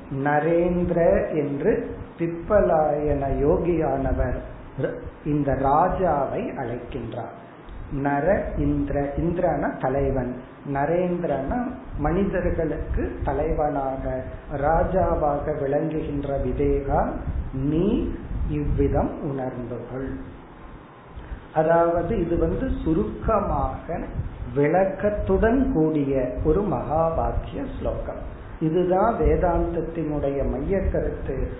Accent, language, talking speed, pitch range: native, Tamil, 55 wpm, 140-180 Hz